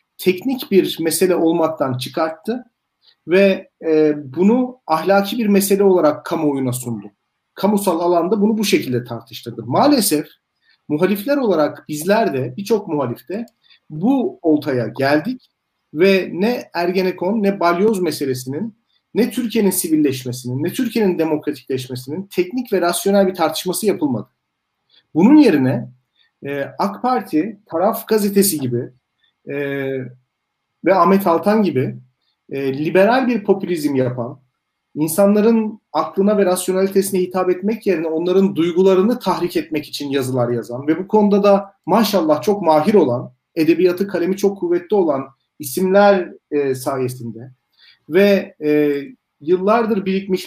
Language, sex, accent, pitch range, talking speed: Turkish, male, native, 150-200 Hz, 120 wpm